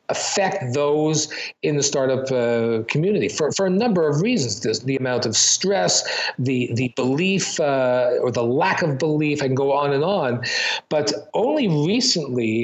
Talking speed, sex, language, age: 165 wpm, male, English, 50-69